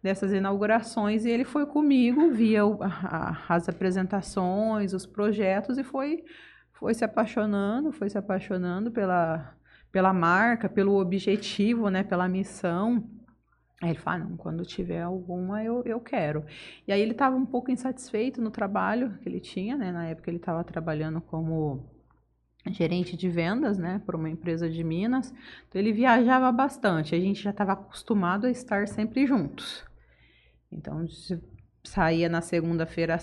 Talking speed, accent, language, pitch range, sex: 155 wpm, Brazilian, Portuguese, 180-230 Hz, female